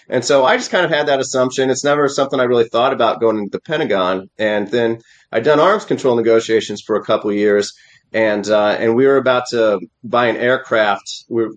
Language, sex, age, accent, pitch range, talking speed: English, male, 30-49, American, 110-145 Hz, 225 wpm